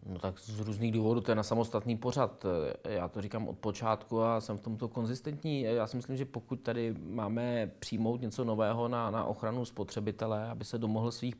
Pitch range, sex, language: 115-130 Hz, male, Czech